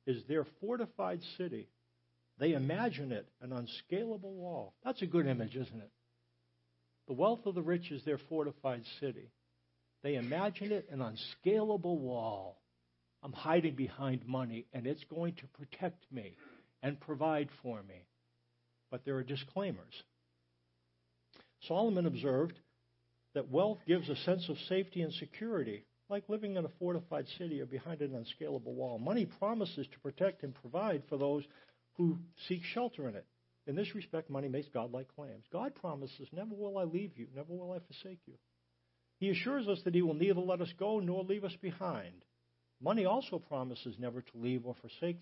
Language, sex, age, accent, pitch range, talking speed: English, male, 60-79, American, 115-180 Hz, 165 wpm